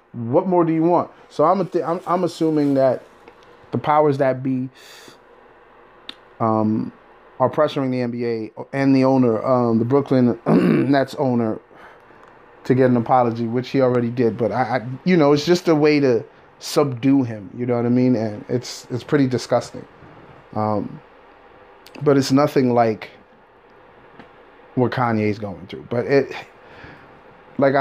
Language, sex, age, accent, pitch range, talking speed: English, male, 30-49, American, 120-150 Hz, 155 wpm